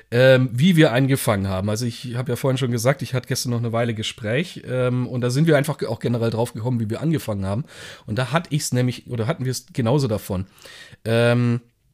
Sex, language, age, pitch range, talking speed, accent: male, German, 40-59, 120-155 Hz, 225 wpm, German